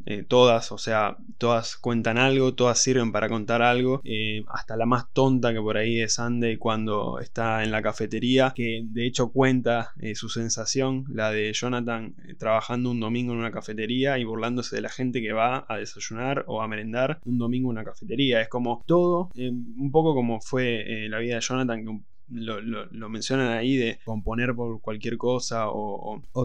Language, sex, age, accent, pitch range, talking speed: Spanish, male, 20-39, Argentinian, 115-130 Hz, 195 wpm